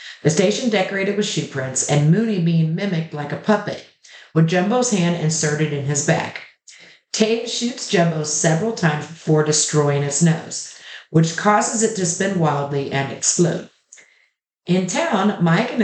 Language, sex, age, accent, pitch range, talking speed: English, female, 50-69, American, 150-195 Hz, 155 wpm